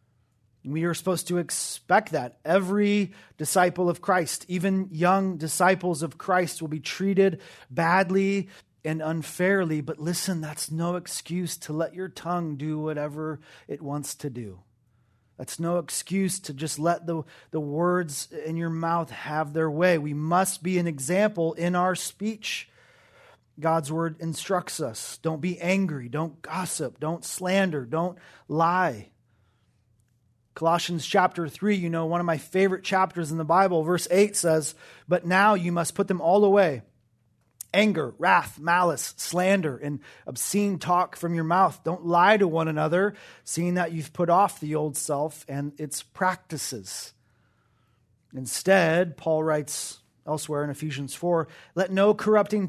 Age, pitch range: 30-49, 150-185 Hz